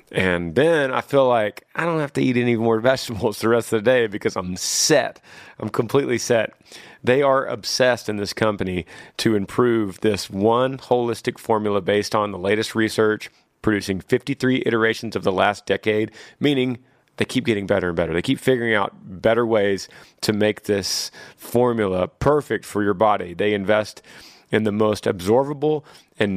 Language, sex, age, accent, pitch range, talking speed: English, male, 30-49, American, 100-120 Hz, 175 wpm